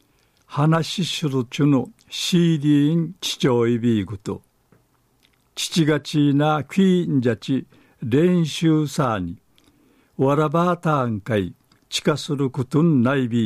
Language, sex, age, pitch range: Japanese, male, 60-79, 120-155 Hz